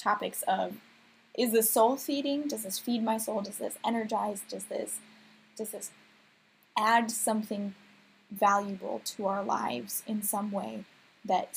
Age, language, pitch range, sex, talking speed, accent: 20-39, English, 195-230 Hz, female, 145 wpm, American